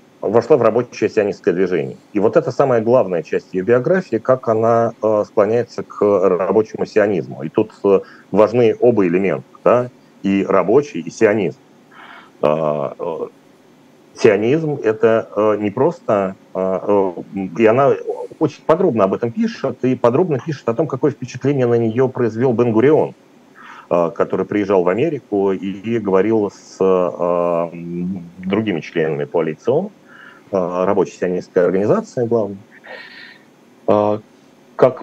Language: Russian